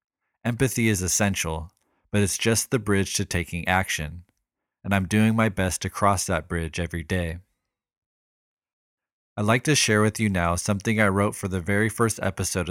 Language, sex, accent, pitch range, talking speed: English, male, American, 90-105 Hz, 175 wpm